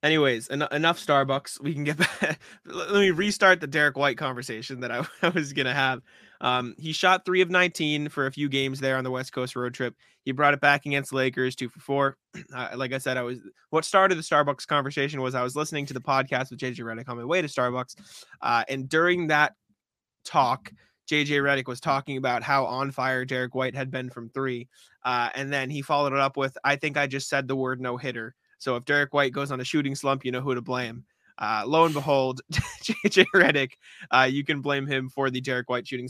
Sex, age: male, 20-39